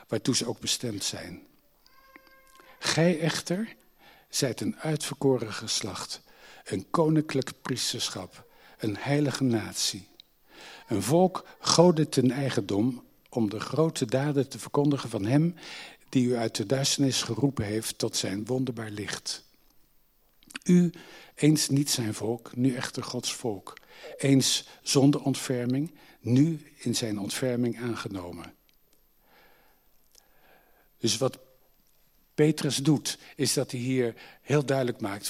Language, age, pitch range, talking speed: Dutch, 60-79, 115-145 Hz, 115 wpm